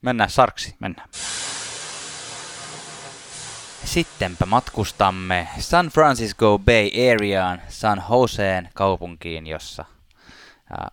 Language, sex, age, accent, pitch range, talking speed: Finnish, male, 20-39, native, 90-120 Hz, 75 wpm